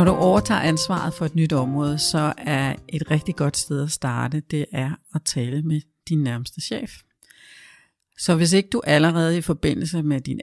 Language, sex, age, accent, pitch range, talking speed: Danish, female, 60-79, native, 145-175 Hz, 190 wpm